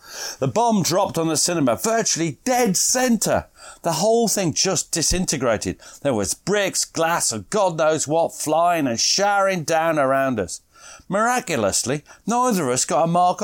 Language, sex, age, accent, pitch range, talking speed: English, male, 40-59, British, 125-180 Hz, 155 wpm